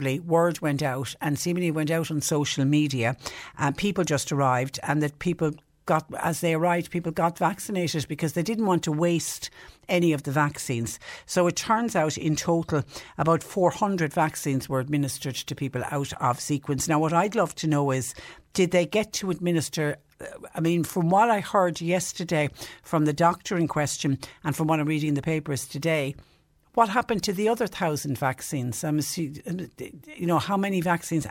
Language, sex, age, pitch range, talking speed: English, female, 60-79, 140-165 Hz, 185 wpm